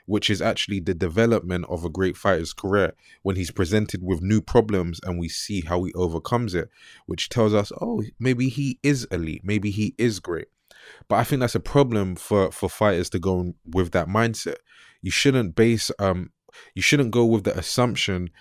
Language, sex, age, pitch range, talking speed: English, male, 20-39, 90-115 Hz, 190 wpm